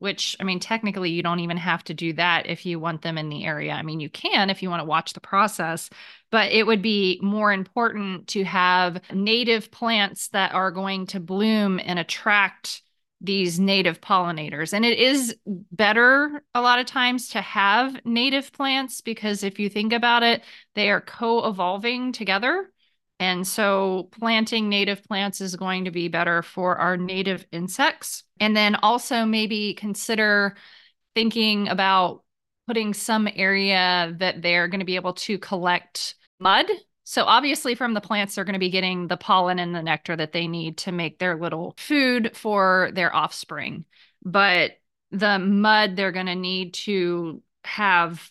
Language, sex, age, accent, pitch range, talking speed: English, female, 30-49, American, 180-215 Hz, 175 wpm